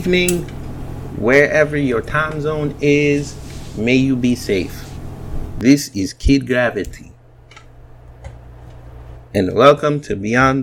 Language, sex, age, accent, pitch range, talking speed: English, male, 30-49, American, 100-135 Hz, 100 wpm